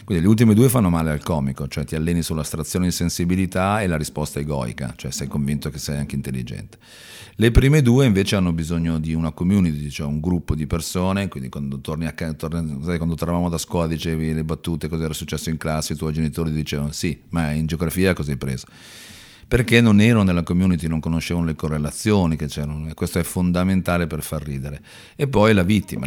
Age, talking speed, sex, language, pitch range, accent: 40-59, 195 wpm, male, Italian, 80-95 Hz, native